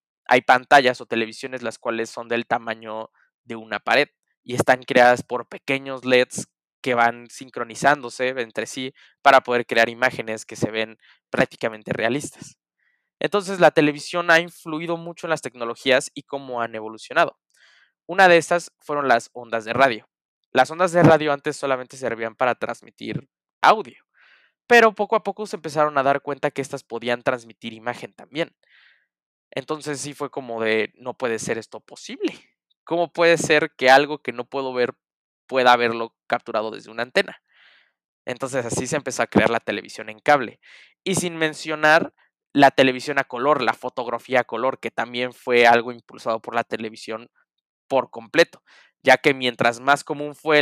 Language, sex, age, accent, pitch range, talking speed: Spanish, male, 20-39, Mexican, 115-150 Hz, 165 wpm